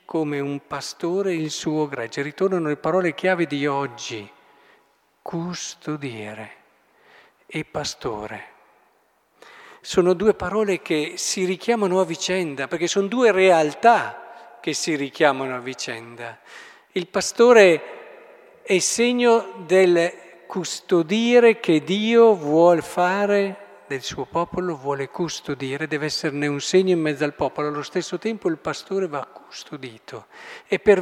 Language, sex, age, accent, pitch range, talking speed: Italian, male, 50-69, native, 145-195 Hz, 125 wpm